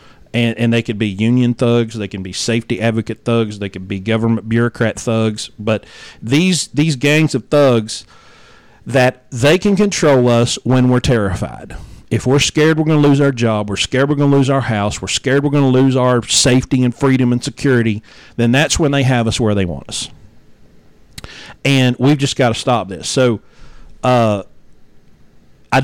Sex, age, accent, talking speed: male, 40-59, American, 190 wpm